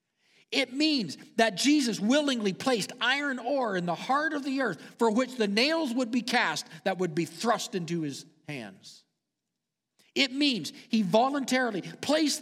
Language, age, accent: English, 50-69, American